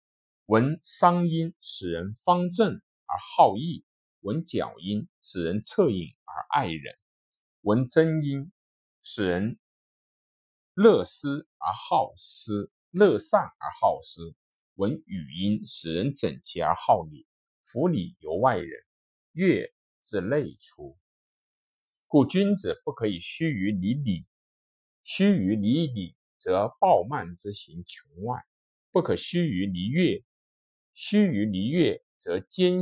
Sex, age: male, 50-69